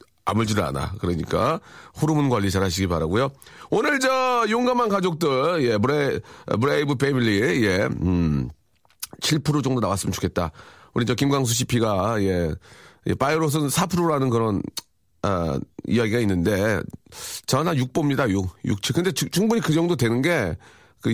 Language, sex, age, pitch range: Korean, male, 40-59, 95-140 Hz